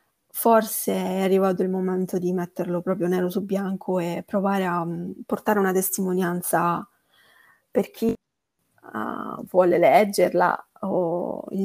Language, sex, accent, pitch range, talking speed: Italian, female, native, 180-210 Hz, 130 wpm